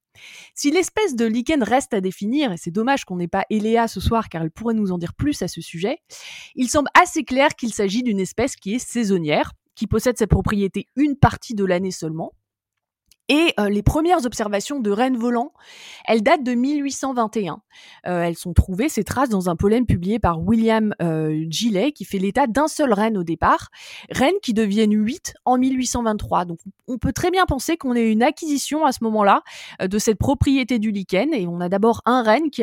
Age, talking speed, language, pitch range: 20-39, 205 wpm, French, 195-255 Hz